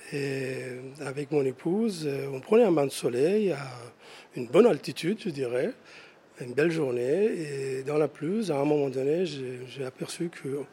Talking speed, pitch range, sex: 175 wpm, 135-180 Hz, male